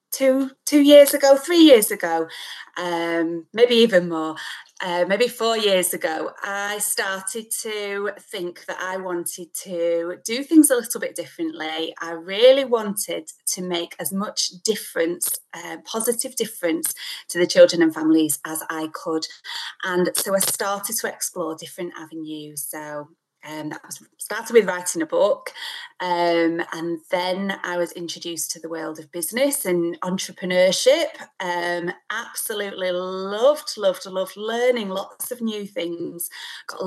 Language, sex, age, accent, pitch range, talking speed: English, female, 30-49, British, 170-220 Hz, 145 wpm